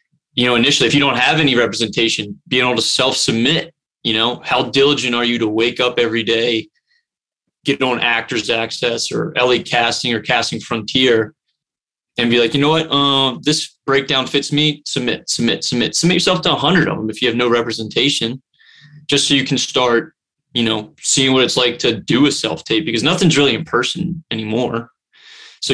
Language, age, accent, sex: English, 20-39, American, male